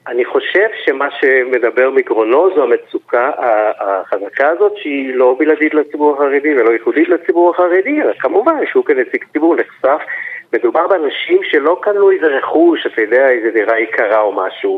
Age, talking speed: 50-69, 150 wpm